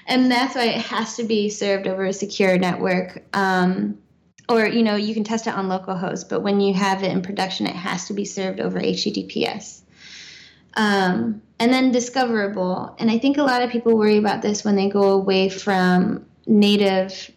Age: 20-39